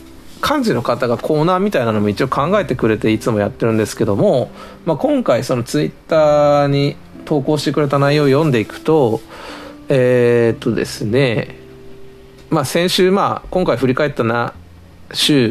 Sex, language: male, Japanese